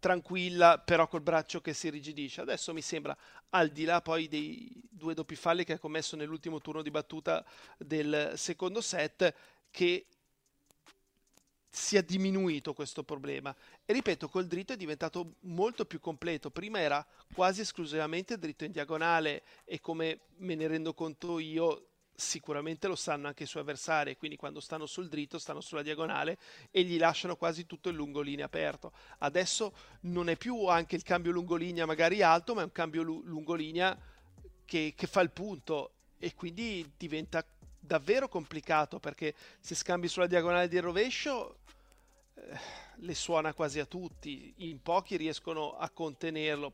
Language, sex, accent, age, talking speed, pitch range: Italian, male, native, 40-59, 160 wpm, 155-180 Hz